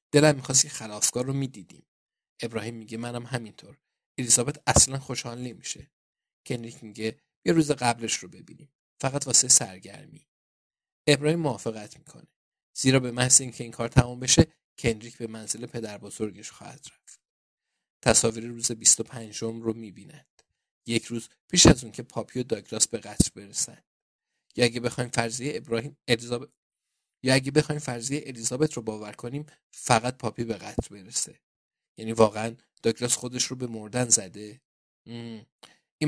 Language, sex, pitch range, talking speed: Persian, male, 115-135 Hz, 145 wpm